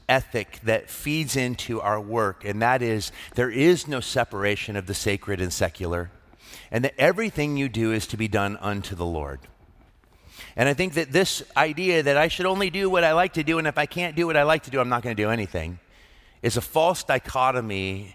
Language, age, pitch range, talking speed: English, 30-49, 100-125 Hz, 220 wpm